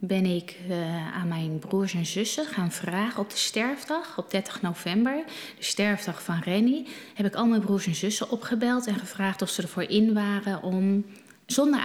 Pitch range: 160-220 Hz